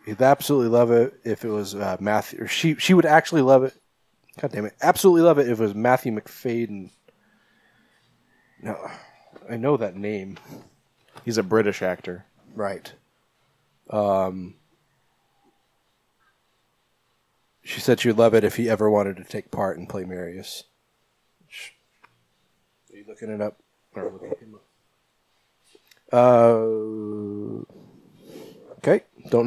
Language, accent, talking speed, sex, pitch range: English, American, 130 wpm, male, 105-125 Hz